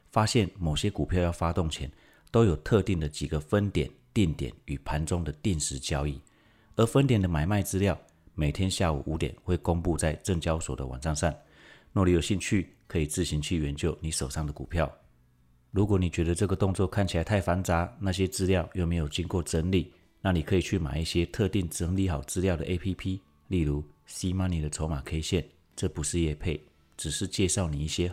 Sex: male